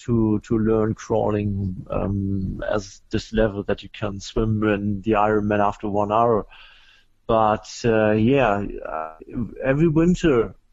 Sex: male